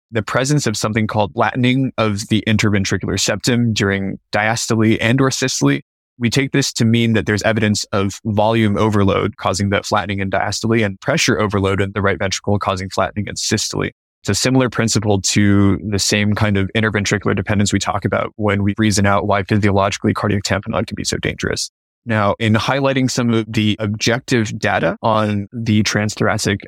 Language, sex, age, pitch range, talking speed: English, male, 20-39, 100-115 Hz, 180 wpm